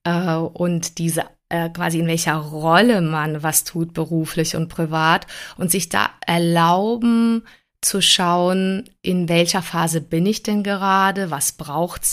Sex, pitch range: female, 165-190 Hz